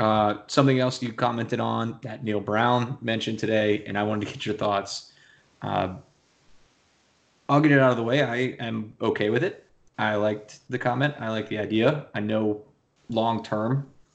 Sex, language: male, English